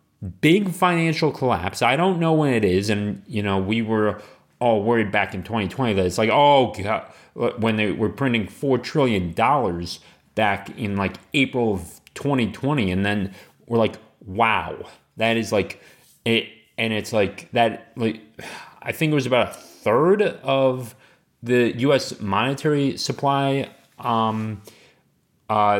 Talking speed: 150 wpm